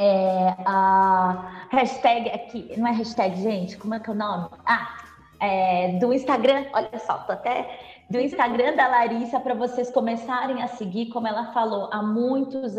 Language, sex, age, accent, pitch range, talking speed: Portuguese, female, 20-39, Brazilian, 190-245 Hz, 170 wpm